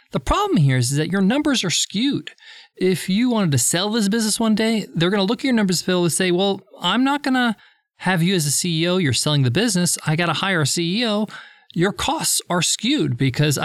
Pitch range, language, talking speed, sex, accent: 150-205 Hz, English, 225 wpm, male, American